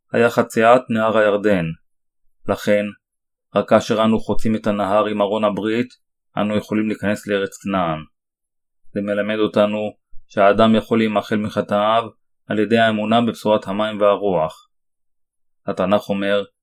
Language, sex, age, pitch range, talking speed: Hebrew, male, 30-49, 100-110 Hz, 125 wpm